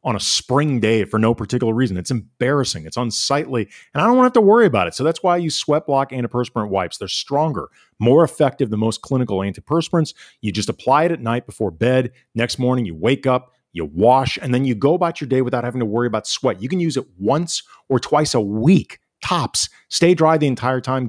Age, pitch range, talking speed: 40-59, 110-145 Hz, 230 wpm